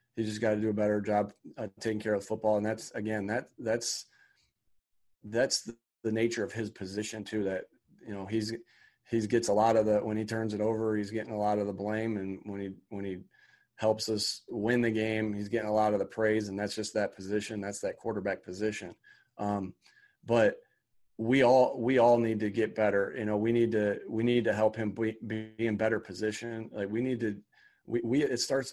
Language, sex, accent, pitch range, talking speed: English, male, American, 105-115 Hz, 225 wpm